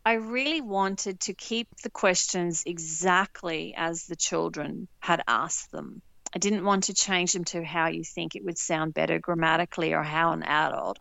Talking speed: 180 wpm